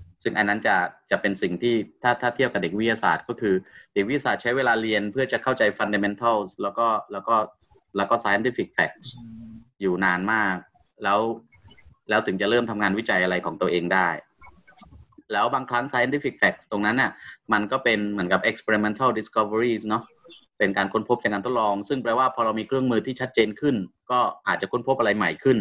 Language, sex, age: English, male, 30-49